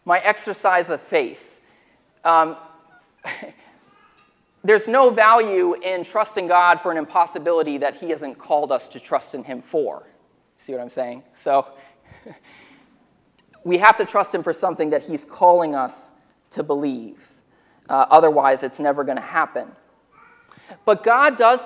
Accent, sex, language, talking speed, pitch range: American, male, English, 145 wpm, 160-240 Hz